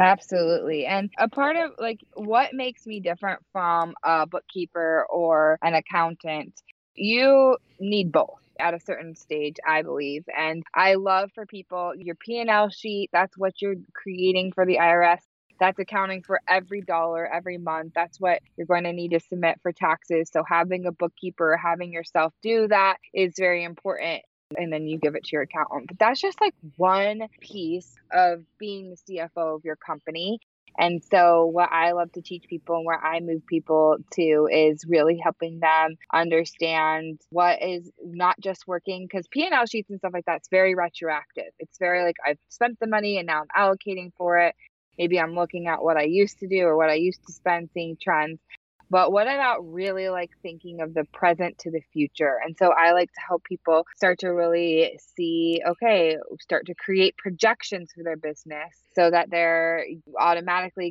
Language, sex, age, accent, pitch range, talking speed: English, female, 20-39, American, 165-190 Hz, 185 wpm